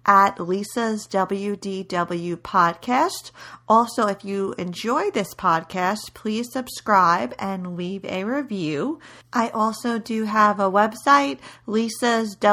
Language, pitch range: English, 170-215 Hz